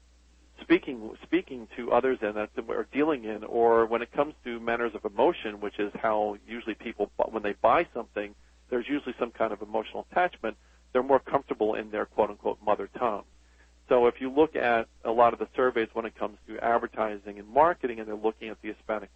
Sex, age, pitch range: male, 50-69, 100-120 Hz